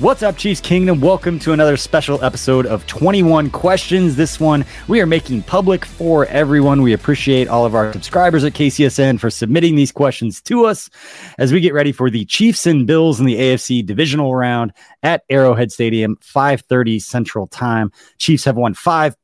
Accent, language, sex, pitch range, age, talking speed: American, English, male, 125-160 Hz, 20-39, 180 wpm